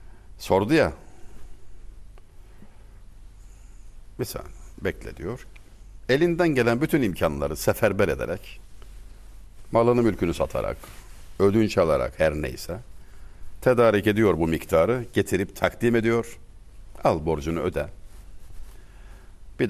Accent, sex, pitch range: native, male, 95-115 Hz